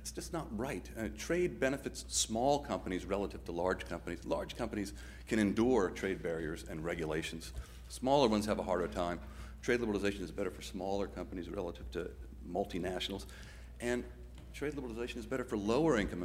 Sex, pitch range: male, 70-115 Hz